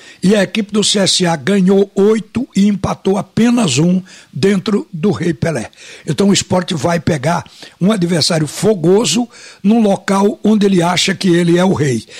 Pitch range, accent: 175-210 Hz, Brazilian